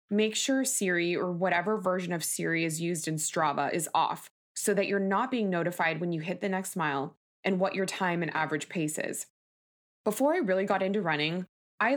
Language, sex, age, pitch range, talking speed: English, female, 20-39, 175-220 Hz, 205 wpm